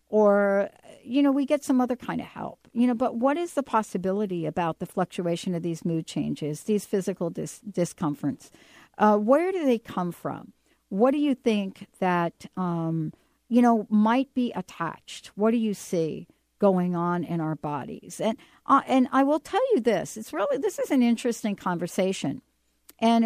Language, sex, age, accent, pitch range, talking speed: English, female, 60-79, American, 175-240 Hz, 180 wpm